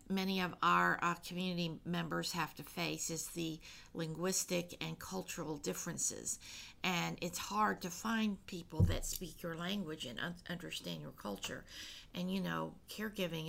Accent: American